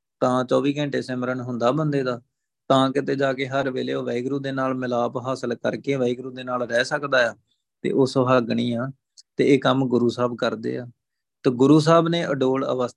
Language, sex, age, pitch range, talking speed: Punjabi, male, 20-39, 125-155 Hz, 155 wpm